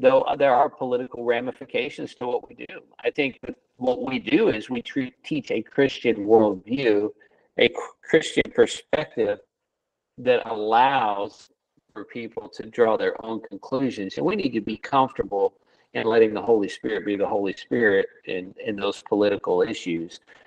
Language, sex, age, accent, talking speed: English, male, 50-69, American, 155 wpm